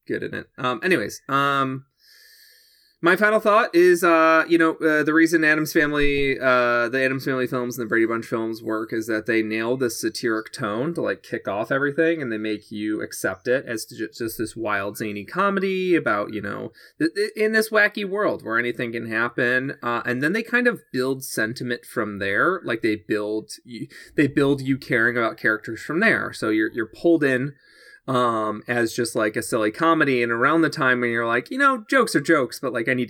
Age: 30-49